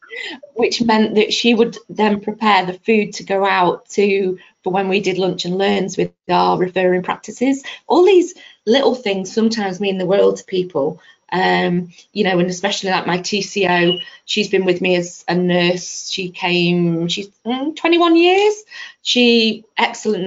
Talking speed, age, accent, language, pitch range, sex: 170 wpm, 20-39, British, English, 175-205 Hz, female